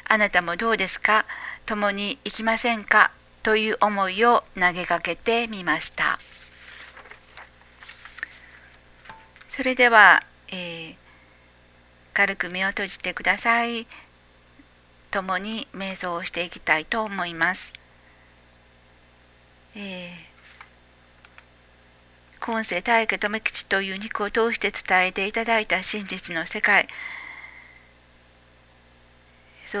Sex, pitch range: female, 150-215 Hz